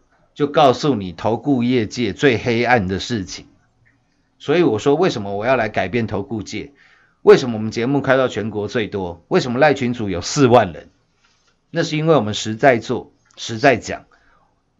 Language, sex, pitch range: Chinese, male, 105-140 Hz